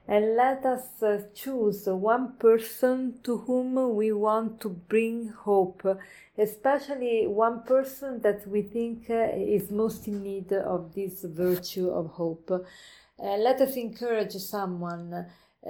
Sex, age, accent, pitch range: female, 40-59, Italian, 195-230 Hz